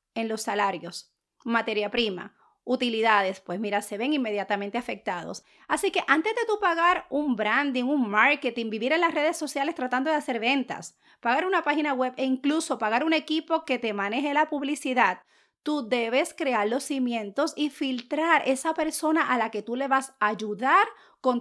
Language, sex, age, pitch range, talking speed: Spanish, female, 30-49, 230-305 Hz, 175 wpm